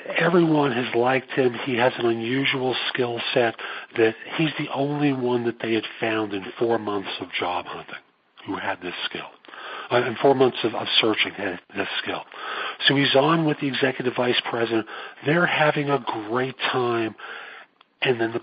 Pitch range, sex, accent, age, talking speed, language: 110-140 Hz, male, American, 50-69, 180 wpm, English